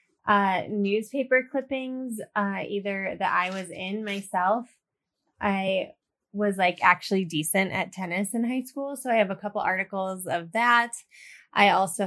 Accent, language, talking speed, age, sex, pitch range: American, English, 150 wpm, 20-39, female, 185-230 Hz